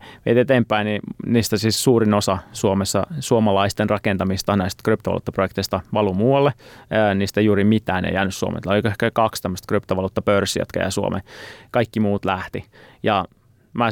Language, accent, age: Finnish, native, 30-49